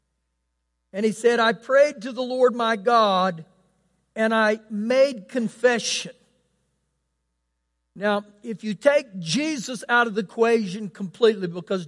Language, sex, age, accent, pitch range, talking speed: English, male, 50-69, American, 195-250 Hz, 125 wpm